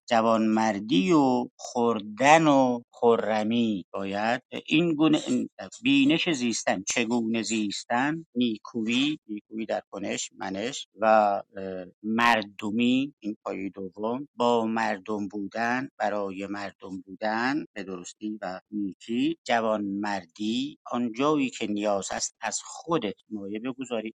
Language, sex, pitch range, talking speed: Persian, male, 105-135 Hz, 105 wpm